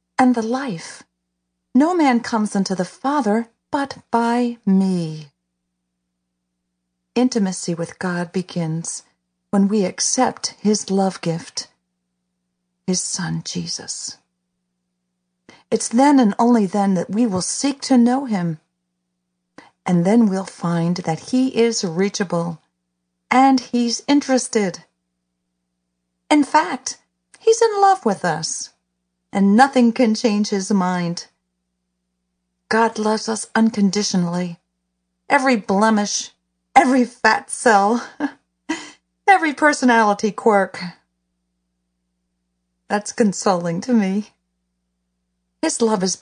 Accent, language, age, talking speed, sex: American, English, 40-59, 105 wpm, female